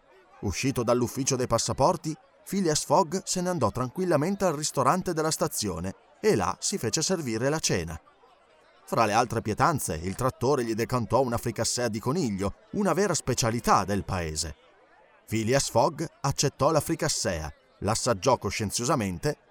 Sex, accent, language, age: male, native, Italian, 30-49